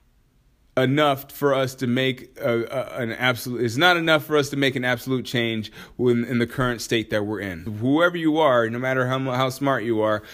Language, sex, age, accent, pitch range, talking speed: English, male, 20-39, American, 120-145 Hz, 215 wpm